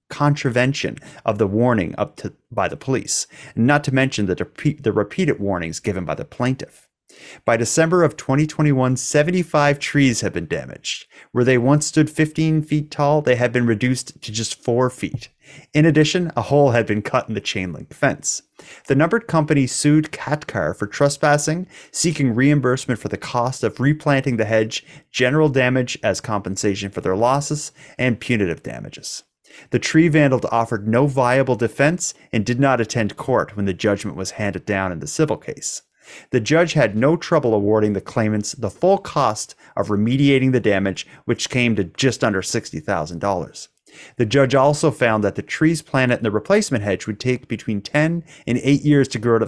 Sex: male